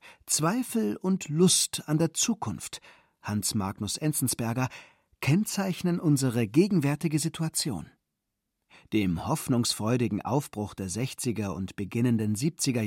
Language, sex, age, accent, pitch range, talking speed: German, male, 40-59, German, 115-165 Hz, 100 wpm